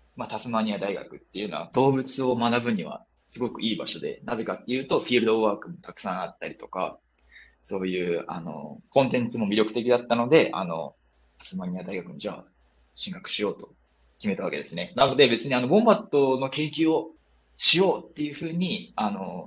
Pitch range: 100-165 Hz